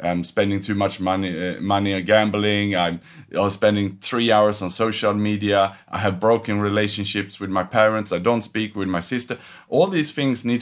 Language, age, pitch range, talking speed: English, 30-49, 95-110 Hz, 180 wpm